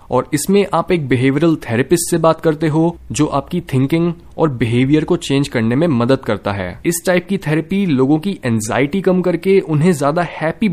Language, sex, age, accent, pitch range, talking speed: Hindi, male, 20-39, native, 125-180 Hz, 190 wpm